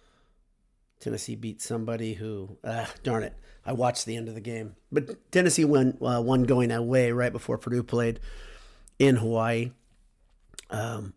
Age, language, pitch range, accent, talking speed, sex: 50-69, English, 115-140 Hz, American, 150 wpm, male